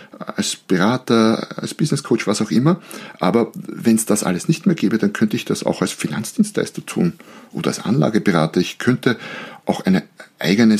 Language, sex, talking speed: German, male, 170 wpm